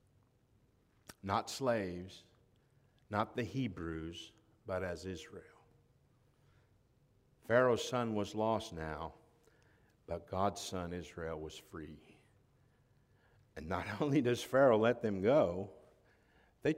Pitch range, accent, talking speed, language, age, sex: 95-125 Hz, American, 100 wpm, English, 50-69, male